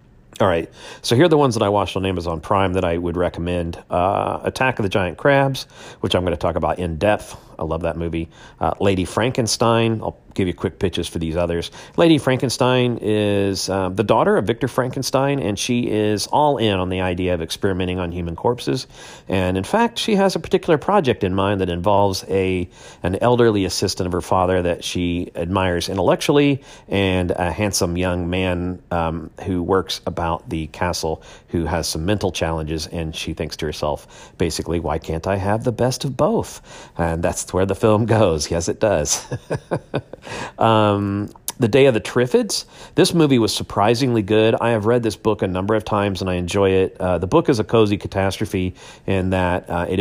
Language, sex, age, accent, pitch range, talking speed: English, male, 40-59, American, 85-105 Hz, 200 wpm